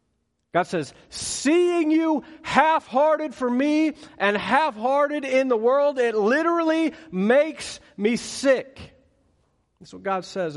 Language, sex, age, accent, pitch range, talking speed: English, male, 40-59, American, 130-180 Hz, 120 wpm